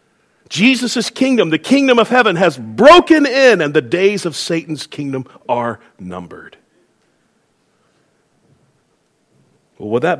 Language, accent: English, American